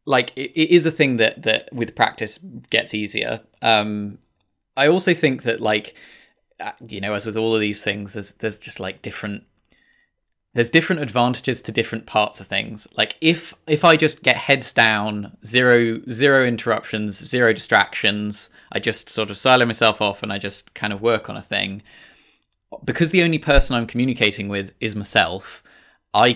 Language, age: English, 20-39